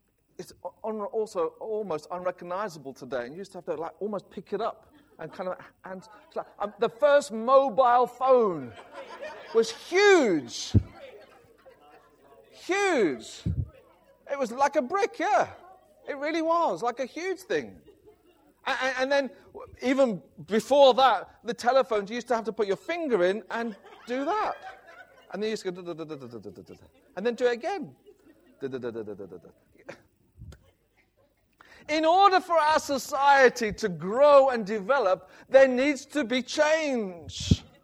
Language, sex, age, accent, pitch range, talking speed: English, male, 40-59, British, 190-270 Hz, 135 wpm